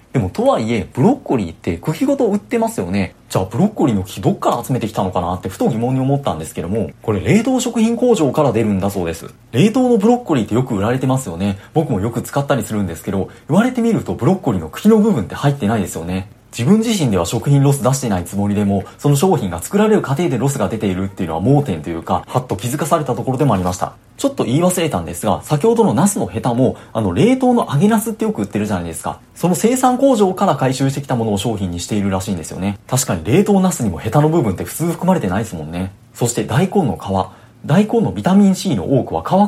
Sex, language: male, Japanese